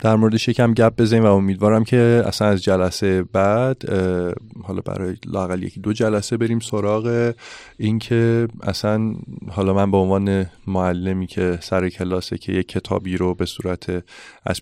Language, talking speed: Persian, 155 wpm